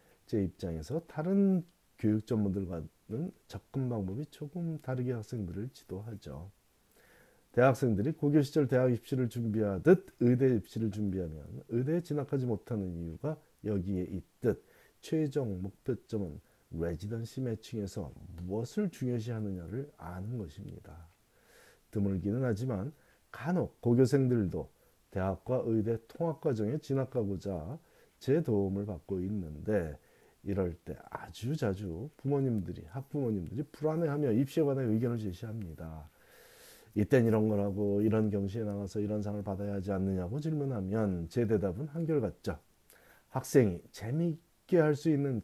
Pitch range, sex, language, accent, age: 100-135 Hz, male, Korean, native, 40-59